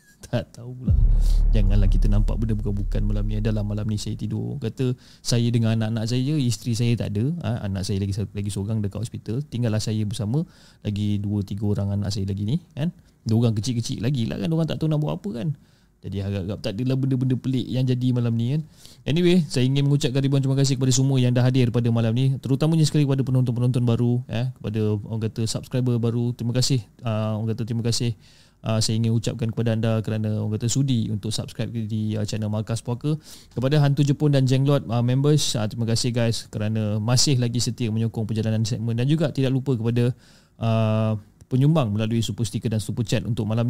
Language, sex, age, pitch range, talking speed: Malay, male, 20-39, 110-130 Hz, 200 wpm